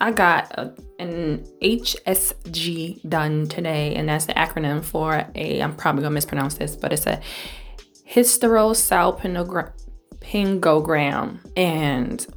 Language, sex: English, female